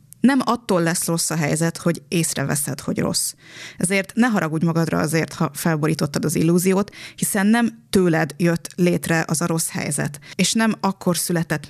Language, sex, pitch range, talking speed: Hungarian, female, 160-190 Hz, 165 wpm